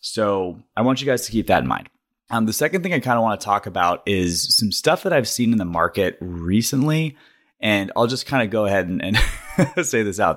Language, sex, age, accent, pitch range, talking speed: English, male, 20-39, American, 85-115 Hz, 250 wpm